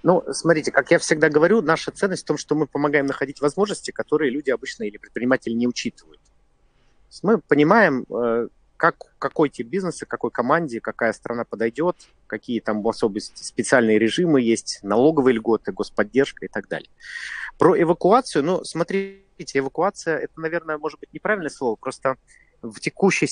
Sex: male